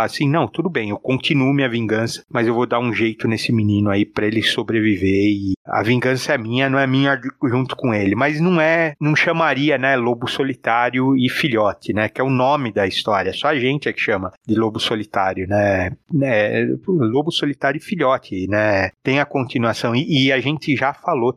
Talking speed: 205 wpm